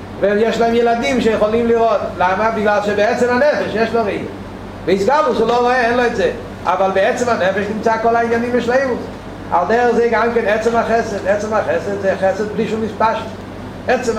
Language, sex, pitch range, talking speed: Hebrew, male, 185-230 Hz, 175 wpm